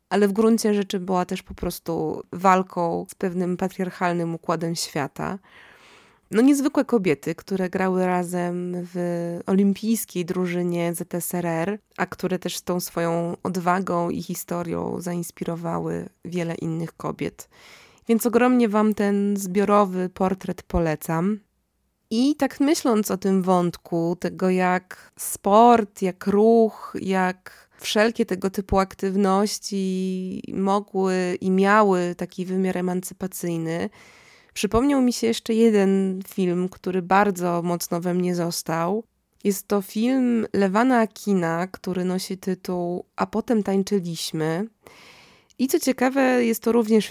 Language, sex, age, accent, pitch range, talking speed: Polish, female, 20-39, native, 175-210 Hz, 120 wpm